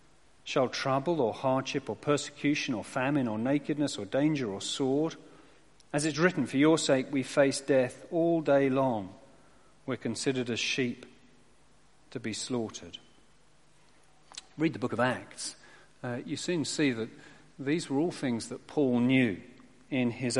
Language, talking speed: English, 155 wpm